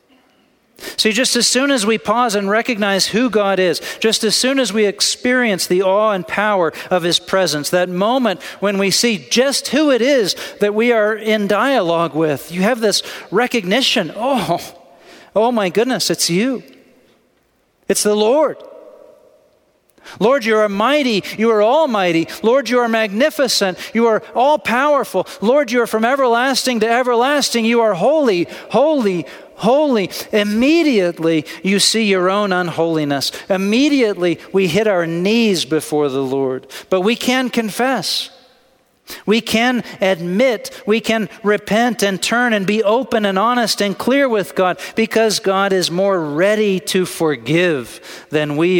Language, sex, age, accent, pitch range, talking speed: English, male, 40-59, American, 185-240 Hz, 150 wpm